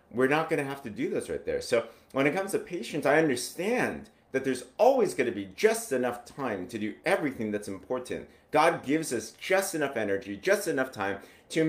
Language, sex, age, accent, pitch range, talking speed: English, male, 30-49, American, 115-155 Hz, 215 wpm